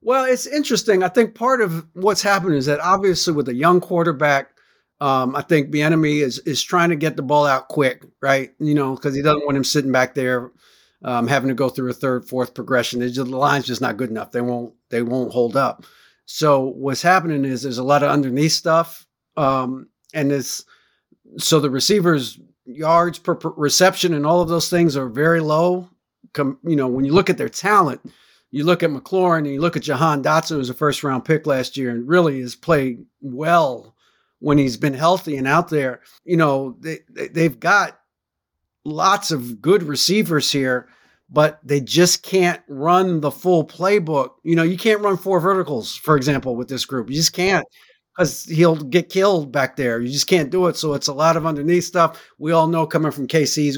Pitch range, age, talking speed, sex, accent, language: 135-175 Hz, 50-69, 210 wpm, male, American, English